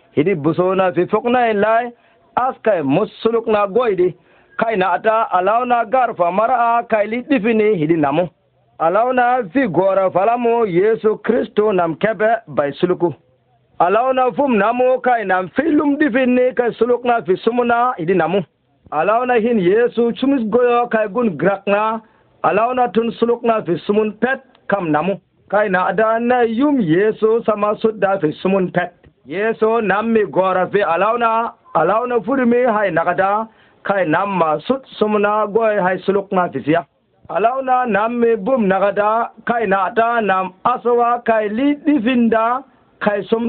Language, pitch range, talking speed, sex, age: Arabic, 195-245 Hz, 130 wpm, male, 50-69